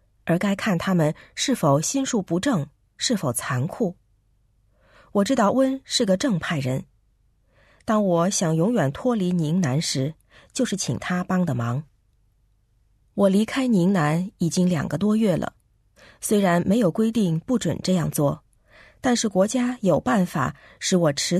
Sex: female